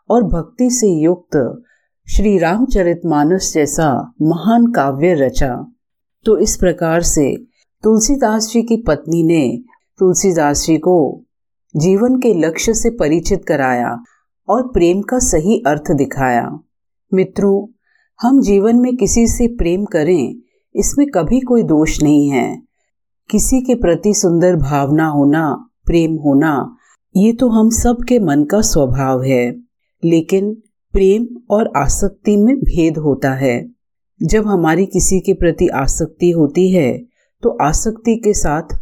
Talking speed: 130 wpm